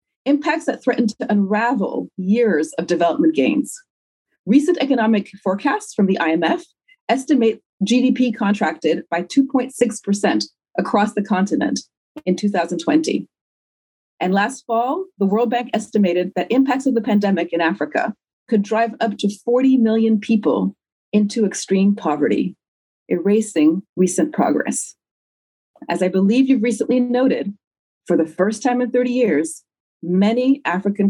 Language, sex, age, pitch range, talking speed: English, female, 40-59, 185-255 Hz, 130 wpm